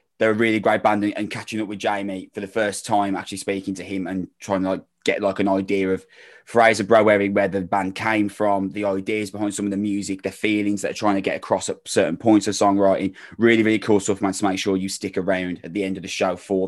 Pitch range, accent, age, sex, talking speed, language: 95-110 Hz, British, 20-39, male, 255 wpm, English